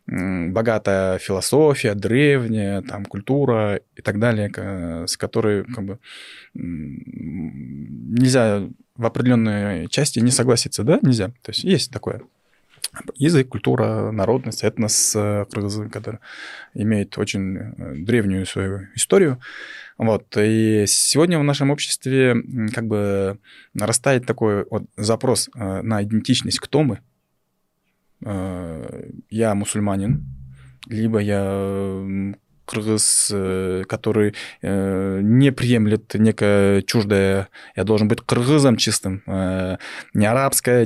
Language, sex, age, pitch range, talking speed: Russian, male, 20-39, 100-120 Hz, 90 wpm